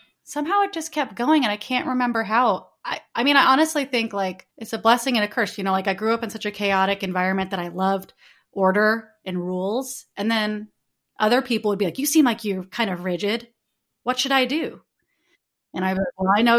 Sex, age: female, 30-49